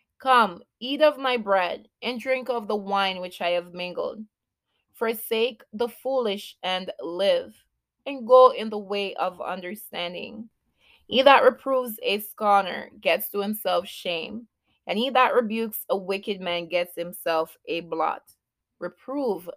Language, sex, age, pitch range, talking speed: English, female, 20-39, 175-230 Hz, 145 wpm